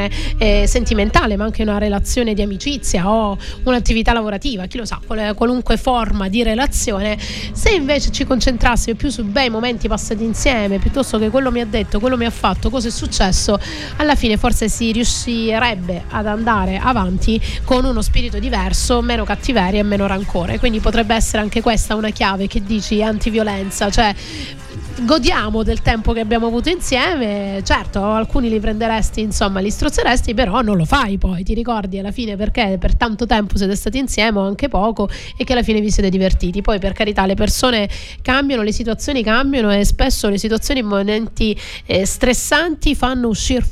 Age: 30-49